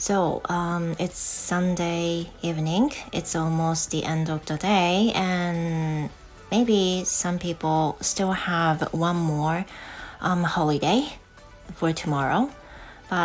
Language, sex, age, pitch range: Japanese, female, 30-49, 155-185 Hz